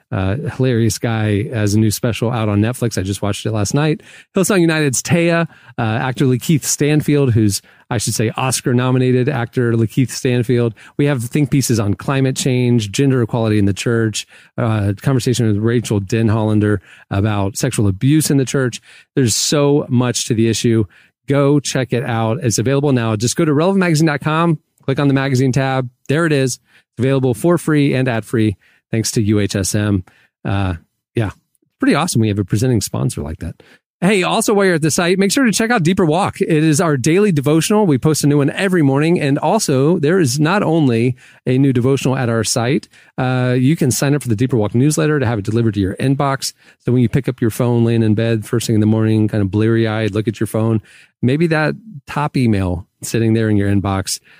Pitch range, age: 110-145 Hz, 30-49